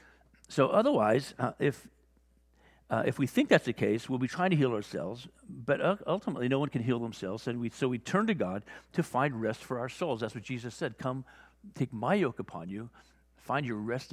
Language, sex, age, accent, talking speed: English, male, 50-69, American, 215 wpm